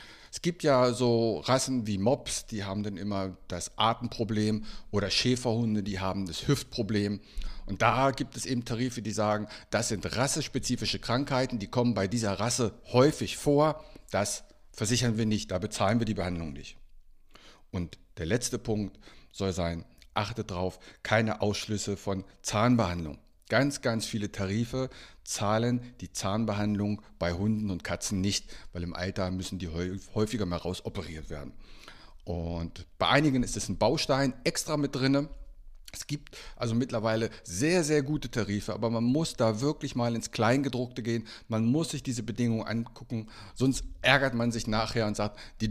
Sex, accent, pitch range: male, German, 100-125 Hz